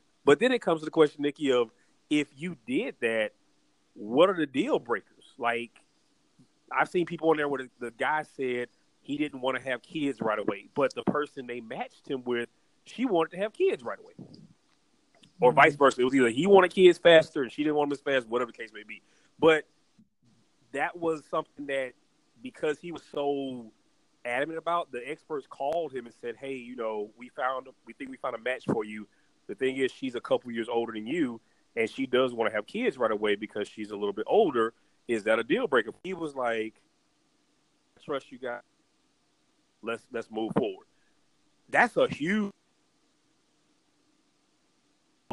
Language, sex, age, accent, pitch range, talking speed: English, male, 30-49, American, 115-155 Hz, 195 wpm